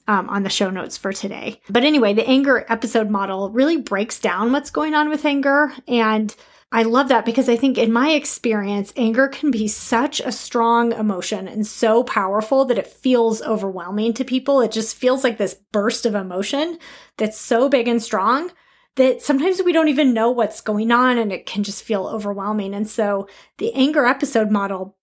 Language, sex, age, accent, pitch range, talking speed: English, female, 30-49, American, 210-260 Hz, 195 wpm